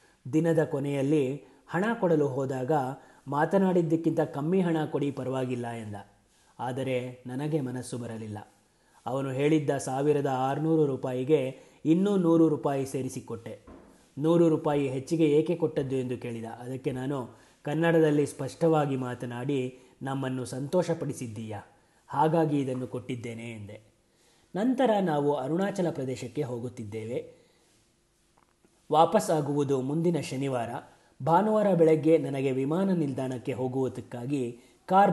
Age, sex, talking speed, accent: 30-49, male, 95 wpm, native